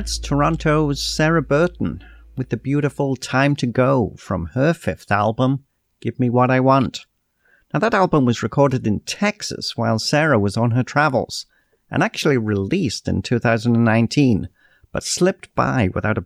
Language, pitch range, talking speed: English, 110-145 Hz, 155 wpm